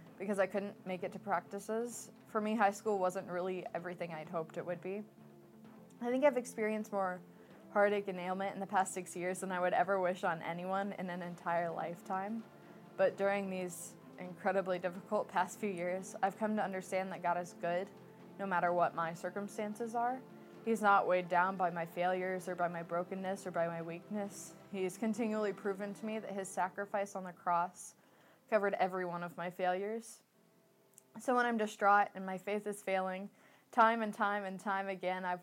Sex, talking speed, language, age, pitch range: female, 190 wpm, English, 20-39, 180-205 Hz